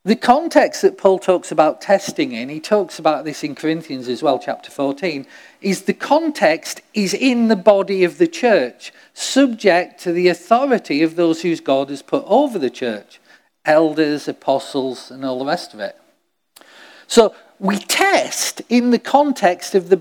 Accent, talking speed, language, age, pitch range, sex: British, 170 wpm, English, 50-69, 170-280 Hz, male